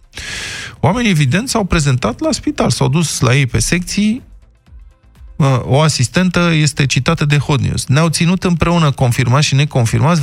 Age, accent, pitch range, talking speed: 20-39, native, 125-175 Hz, 145 wpm